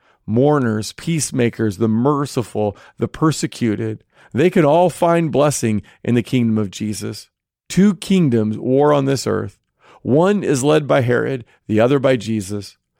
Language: English